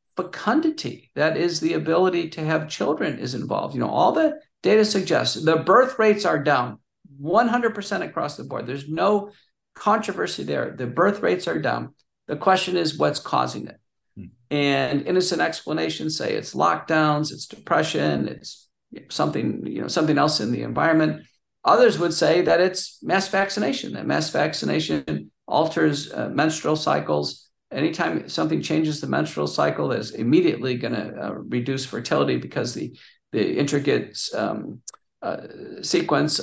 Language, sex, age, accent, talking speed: English, male, 50-69, American, 145 wpm